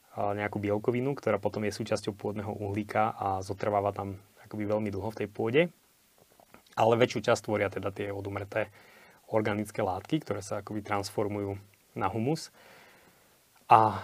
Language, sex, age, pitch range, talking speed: Slovak, male, 20-39, 105-120 Hz, 140 wpm